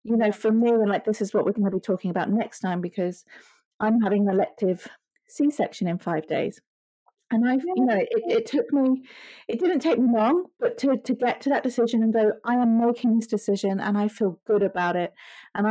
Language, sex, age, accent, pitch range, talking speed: English, female, 40-59, British, 190-230 Hz, 225 wpm